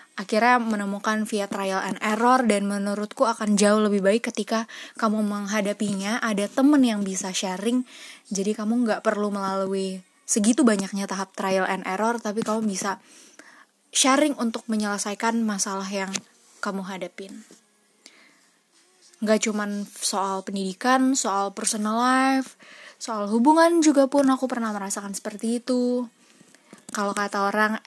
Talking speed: 130 wpm